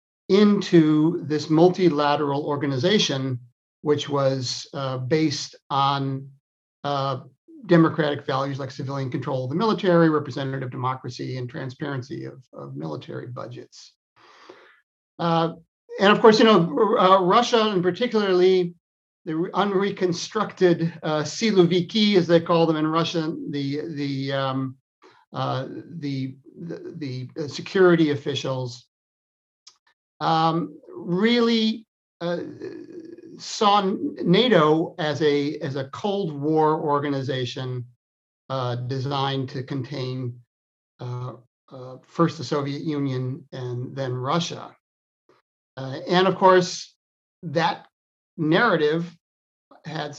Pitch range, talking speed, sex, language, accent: 135-175 Hz, 105 wpm, male, English, American